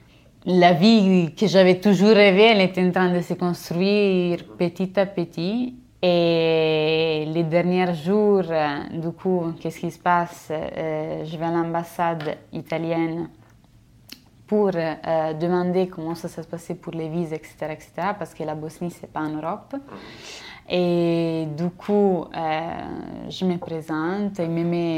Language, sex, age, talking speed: French, female, 20-39, 145 wpm